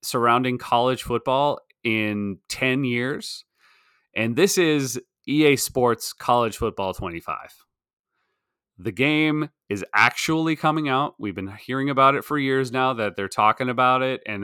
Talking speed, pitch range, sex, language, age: 140 wpm, 105-130 Hz, male, English, 30-49